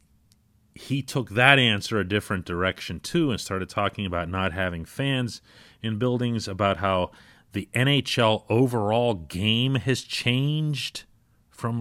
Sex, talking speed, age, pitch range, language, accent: male, 130 wpm, 40-59, 100-135 Hz, English, American